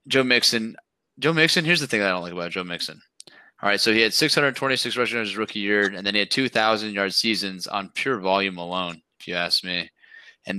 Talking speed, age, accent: 230 wpm, 20-39, American